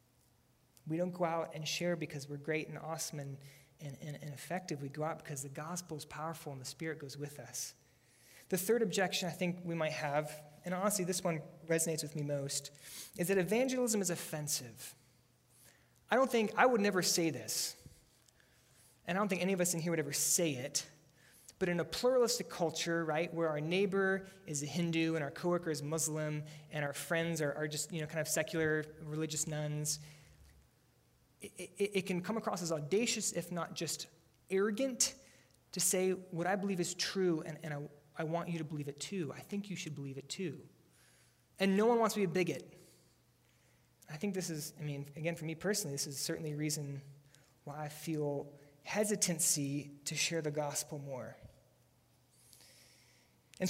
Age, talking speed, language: 20-39, 190 wpm, English